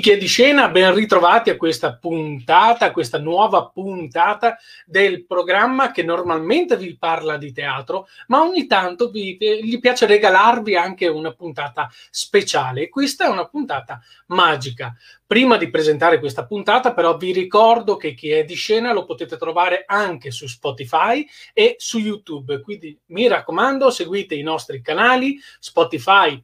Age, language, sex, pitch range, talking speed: 30-49, Italian, male, 160-240 Hz, 150 wpm